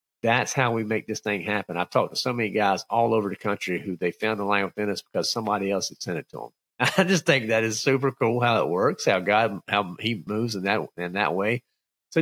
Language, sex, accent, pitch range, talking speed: English, male, American, 100-130 Hz, 260 wpm